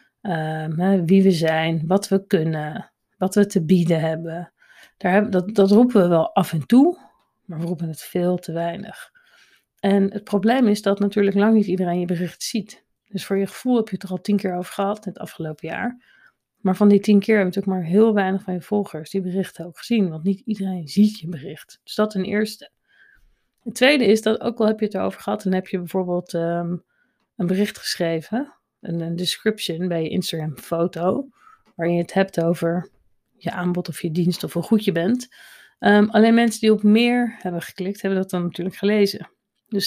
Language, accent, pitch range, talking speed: Dutch, Dutch, 175-215 Hz, 210 wpm